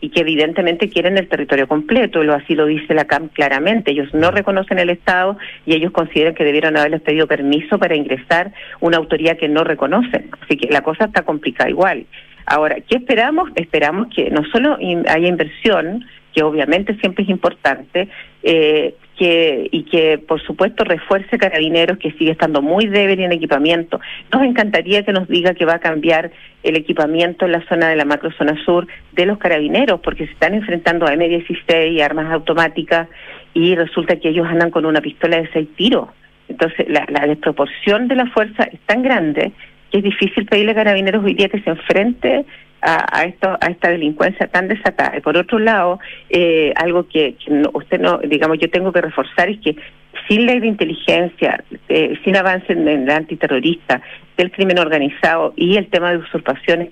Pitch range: 160-195 Hz